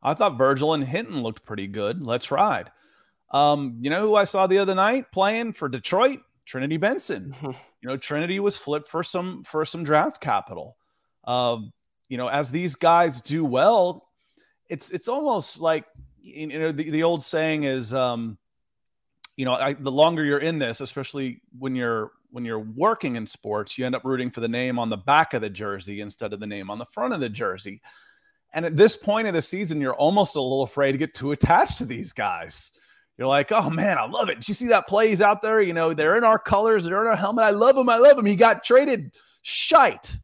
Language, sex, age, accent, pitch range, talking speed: English, male, 30-49, American, 135-205 Hz, 220 wpm